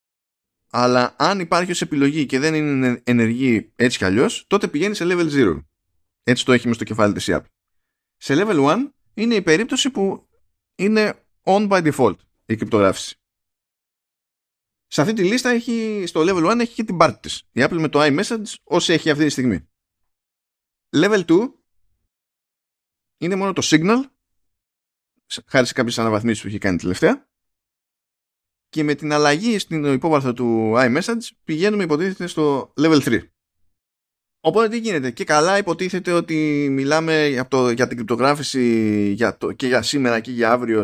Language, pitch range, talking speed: Greek, 100-165 Hz, 160 wpm